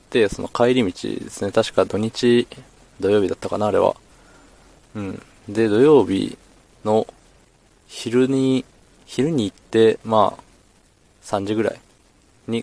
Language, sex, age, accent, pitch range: Japanese, male, 20-39, native, 95-115 Hz